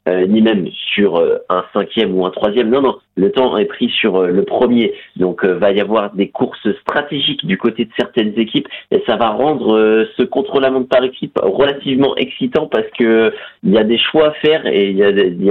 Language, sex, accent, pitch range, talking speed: French, male, French, 95-130 Hz, 230 wpm